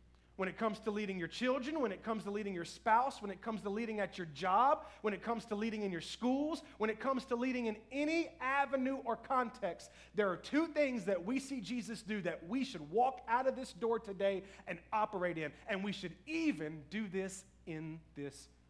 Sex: male